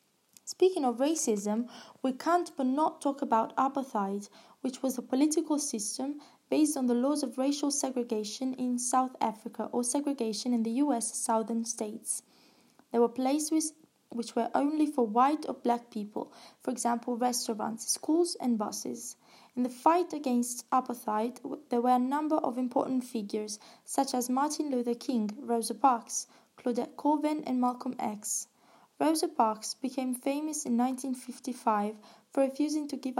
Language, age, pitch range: Italian, 20-39, 230-275 Hz